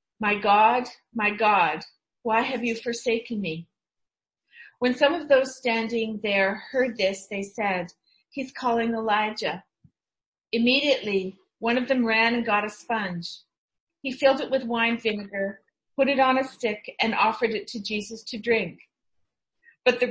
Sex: female